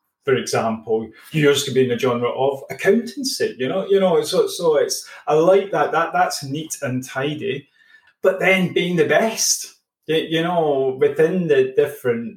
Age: 30-49